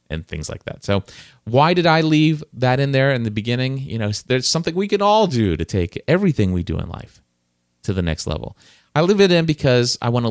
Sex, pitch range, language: male, 100-135 Hz, English